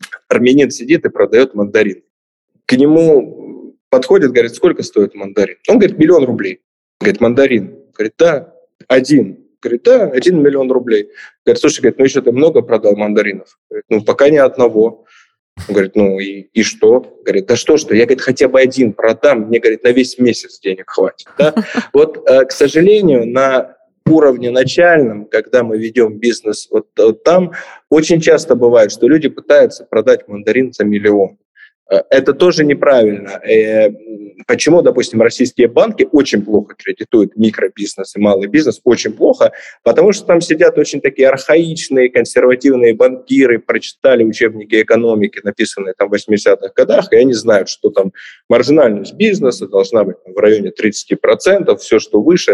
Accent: native